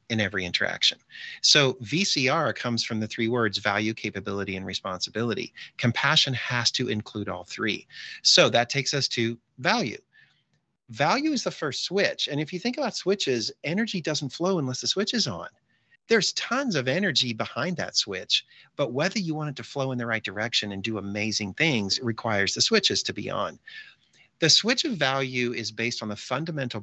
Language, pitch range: English, 110-155 Hz